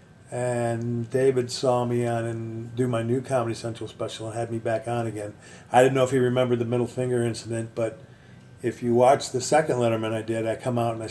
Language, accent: English, American